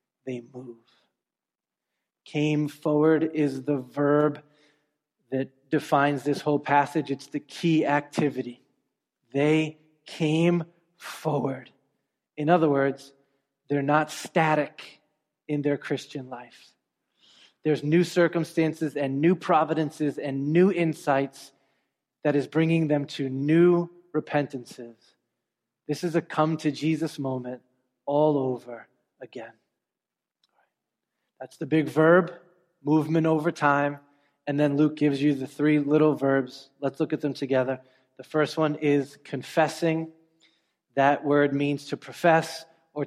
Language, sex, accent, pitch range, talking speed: English, male, American, 140-160 Hz, 120 wpm